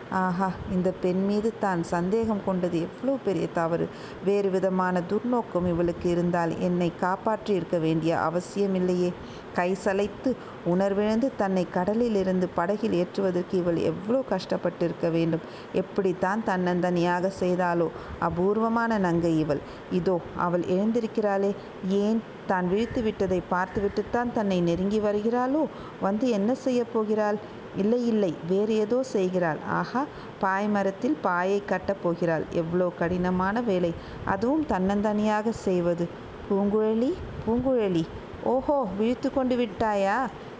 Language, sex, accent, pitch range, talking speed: Tamil, female, native, 175-215 Hz, 105 wpm